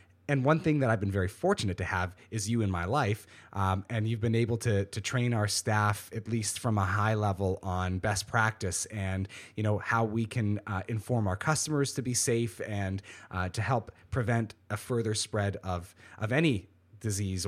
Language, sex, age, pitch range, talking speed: English, male, 30-49, 95-115 Hz, 205 wpm